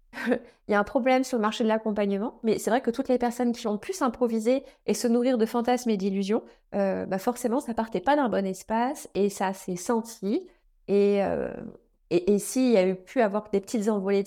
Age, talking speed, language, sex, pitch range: 20-39, 230 wpm, French, female, 200-245 Hz